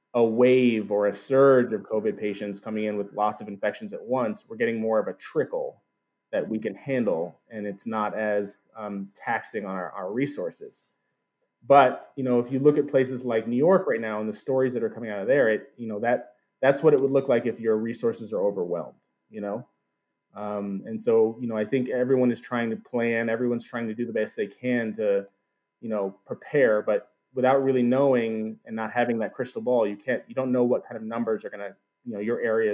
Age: 20-39